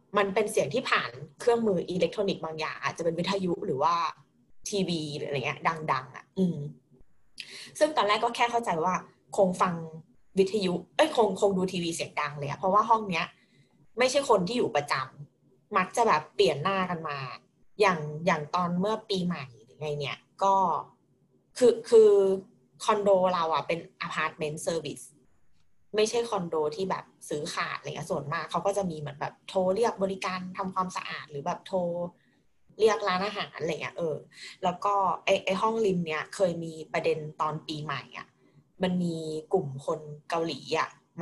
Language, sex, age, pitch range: Thai, female, 20-39, 155-200 Hz